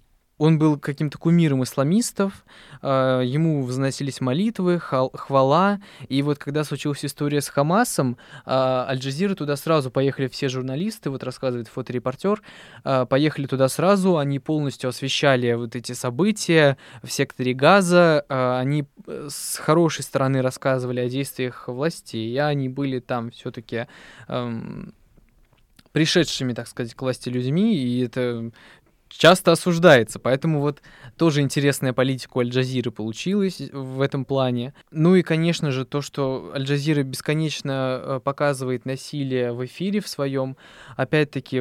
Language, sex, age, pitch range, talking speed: Russian, male, 20-39, 125-150 Hz, 125 wpm